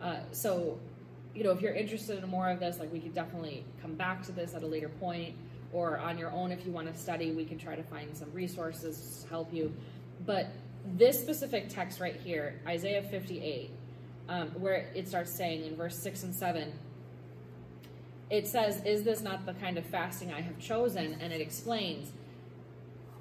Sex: female